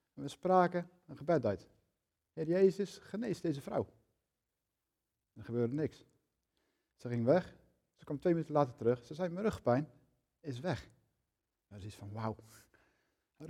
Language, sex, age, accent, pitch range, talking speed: Dutch, male, 50-69, Dutch, 120-165 Hz, 155 wpm